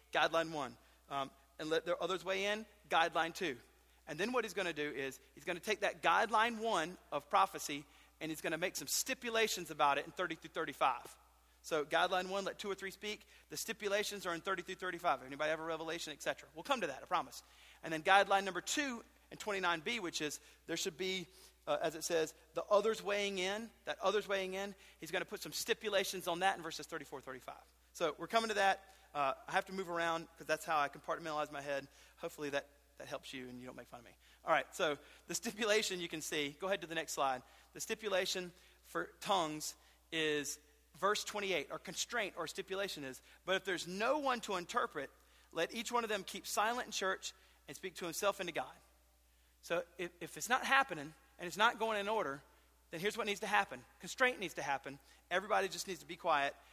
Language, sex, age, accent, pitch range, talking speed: English, male, 40-59, American, 155-200 Hz, 225 wpm